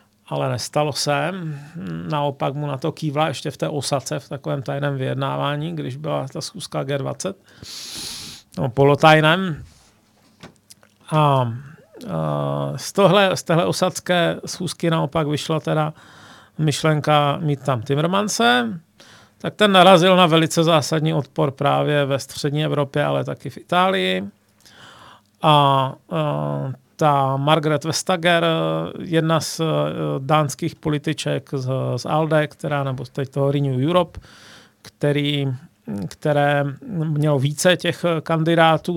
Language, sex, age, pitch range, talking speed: Czech, male, 40-59, 140-170 Hz, 120 wpm